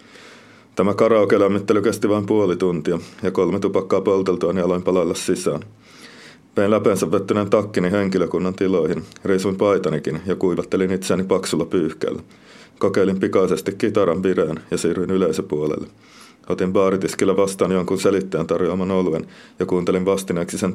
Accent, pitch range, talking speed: native, 95-100 Hz, 135 wpm